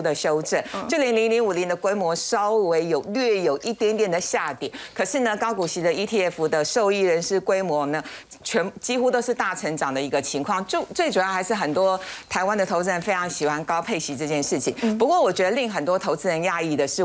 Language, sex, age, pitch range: Chinese, female, 50-69, 165-235 Hz